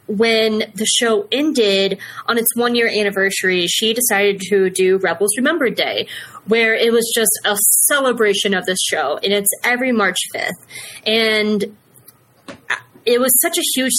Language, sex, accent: English, female, American